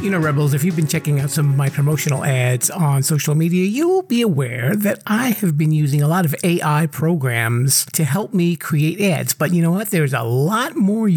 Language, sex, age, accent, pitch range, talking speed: English, male, 50-69, American, 150-195 Hz, 225 wpm